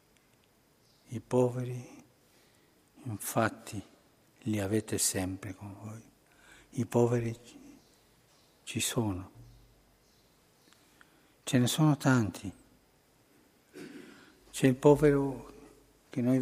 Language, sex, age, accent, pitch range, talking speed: Italian, male, 60-79, native, 110-140 Hz, 75 wpm